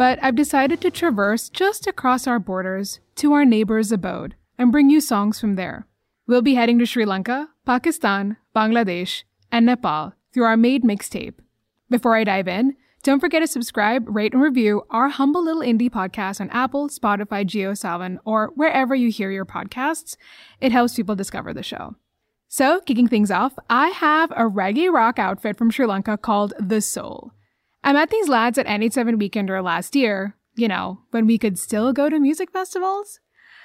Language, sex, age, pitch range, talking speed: English, female, 20-39, 210-280 Hz, 180 wpm